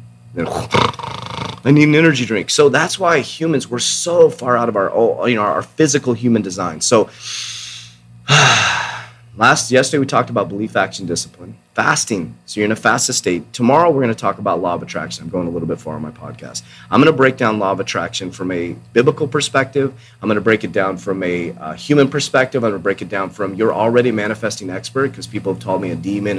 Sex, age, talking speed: male, 30-49, 210 wpm